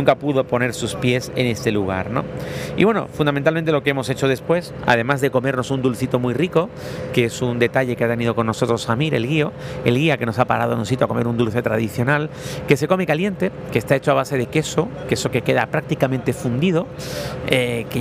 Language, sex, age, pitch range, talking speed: Spanish, male, 40-59, 120-150 Hz, 225 wpm